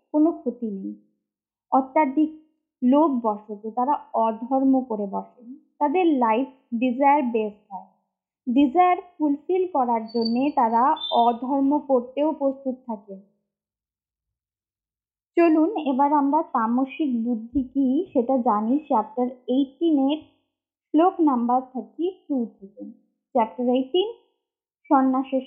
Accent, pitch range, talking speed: native, 230-310 Hz, 65 wpm